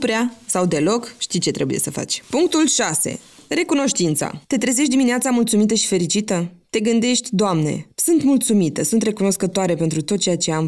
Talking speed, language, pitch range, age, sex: 165 wpm, Romanian, 175-235 Hz, 20-39, female